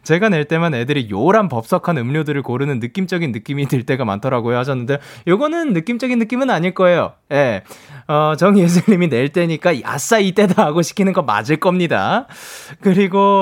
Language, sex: Korean, male